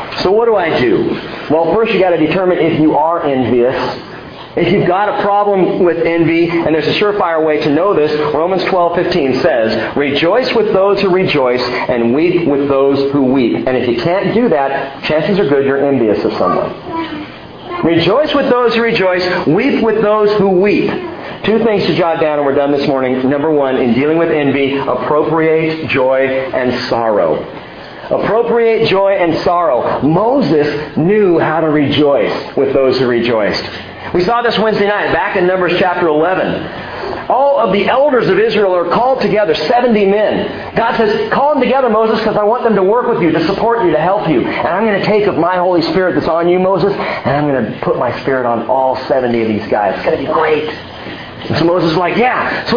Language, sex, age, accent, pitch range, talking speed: English, male, 40-59, American, 145-220 Hz, 205 wpm